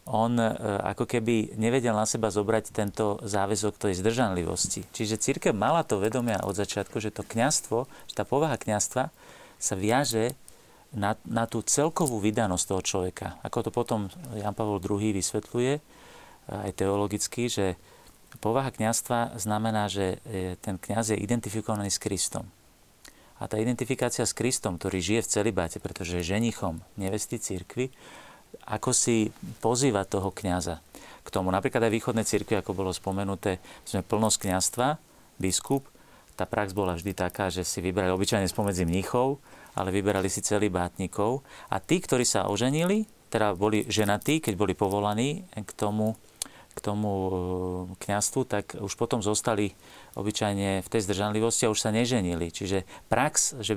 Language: Slovak